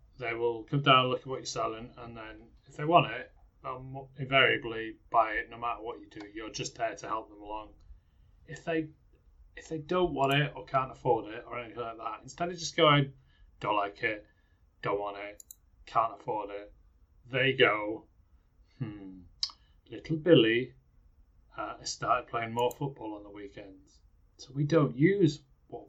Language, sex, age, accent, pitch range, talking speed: English, male, 30-49, British, 95-135 Hz, 185 wpm